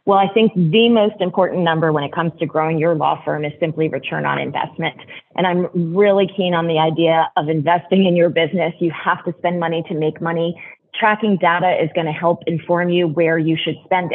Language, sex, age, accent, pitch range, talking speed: English, female, 30-49, American, 165-205 Hz, 220 wpm